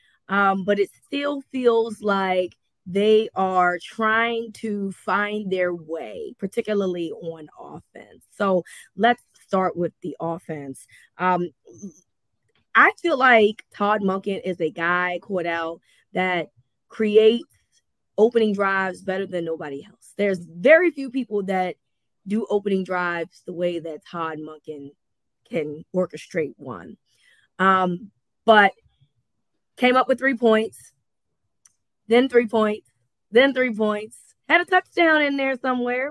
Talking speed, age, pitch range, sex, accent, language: 125 wpm, 20-39, 175-235 Hz, female, American, English